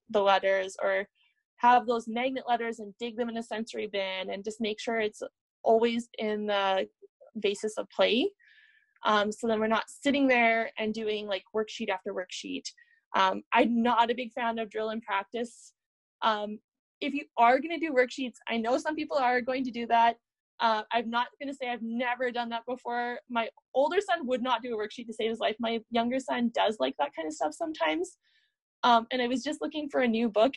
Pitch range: 220-275 Hz